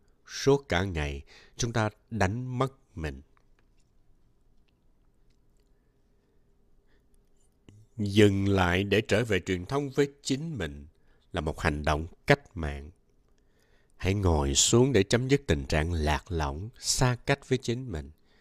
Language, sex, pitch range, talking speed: Vietnamese, male, 85-125 Hz, 125 wpm